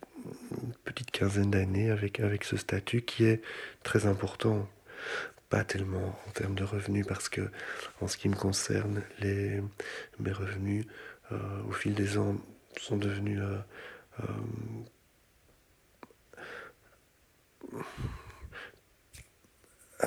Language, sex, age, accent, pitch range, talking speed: French, male, 40-59, French, 100-115 Hz, 110 wpm